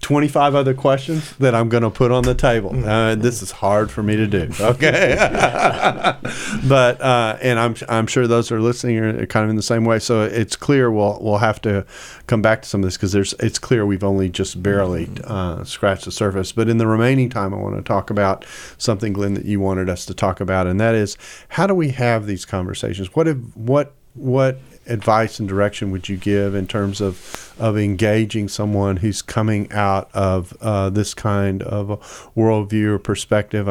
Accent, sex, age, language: American, male, 40-59, English